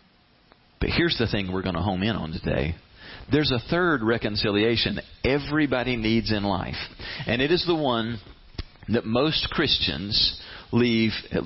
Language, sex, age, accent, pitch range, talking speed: English, male, 40-59, American, 90-125 Hz, 150 wpm